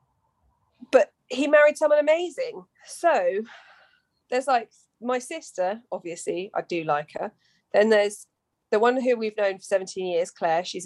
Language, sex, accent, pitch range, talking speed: English, female, British, 195-270 Hz, 145 wpm